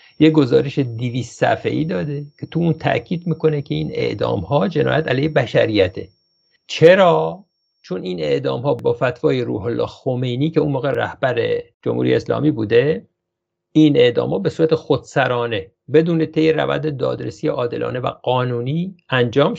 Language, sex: English, male